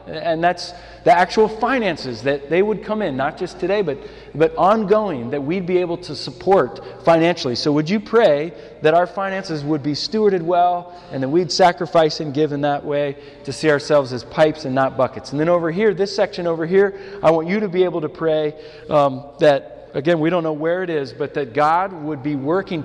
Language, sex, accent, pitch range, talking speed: English, male, American, 140-180 Hz, 215 wpm